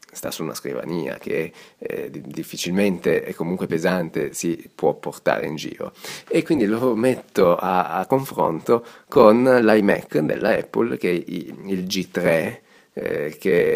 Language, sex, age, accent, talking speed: Italian, male, 30-49, native, 140 wpm